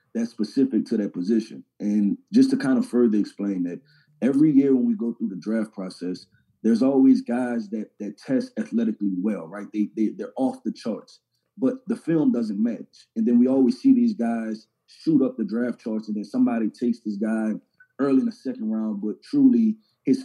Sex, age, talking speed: male, 30-49, 200 wpm